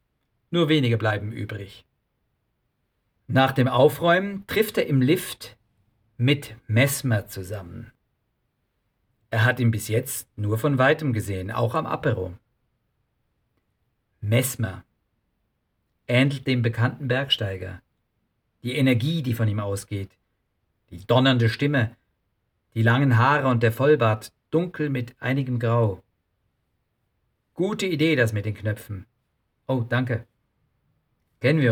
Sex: male